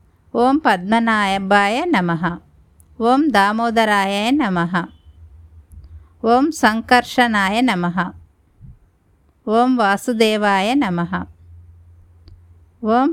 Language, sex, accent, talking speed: Telugu, female, native, 45 wpm